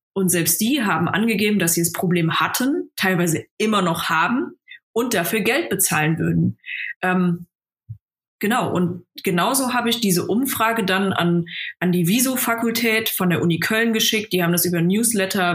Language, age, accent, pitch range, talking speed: German, 20-39, German, 175-220 Hz, 160 wpm